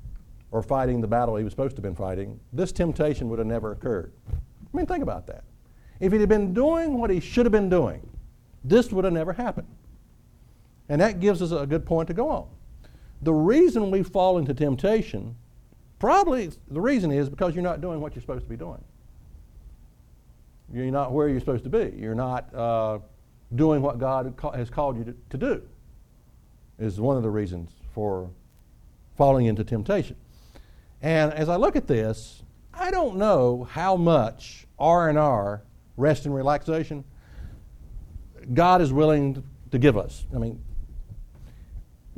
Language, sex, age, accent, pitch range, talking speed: English, male, 60-79, American, 115-170 Hz, 170 wpm